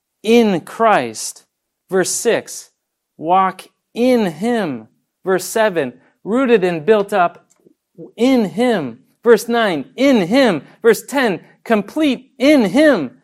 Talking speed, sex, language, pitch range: 110 wpm, male, English, 175-245 Hz